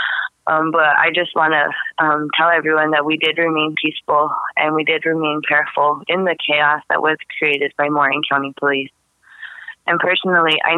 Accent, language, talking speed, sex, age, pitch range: American, English, 180 wpm, female, 20-39, 150-165 Hz